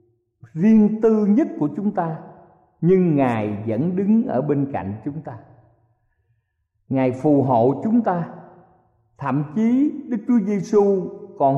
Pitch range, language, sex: 115-185 Hz, Vietnamese, male